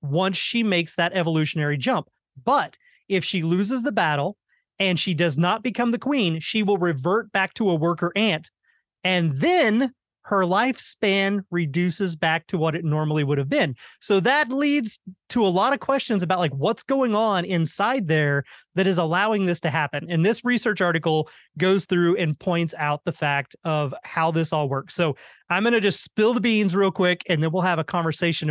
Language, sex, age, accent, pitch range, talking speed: English, male, 30-49, American, 160-215 Hz, 195 wpm